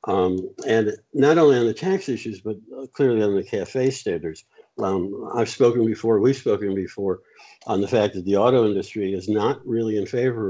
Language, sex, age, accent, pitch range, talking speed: English, male, 60-79, American, 105-125 Hz, 190 wpm